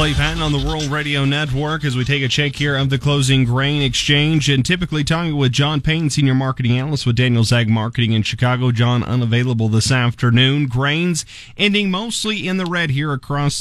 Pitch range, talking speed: 120-145 Hz, 190 wpm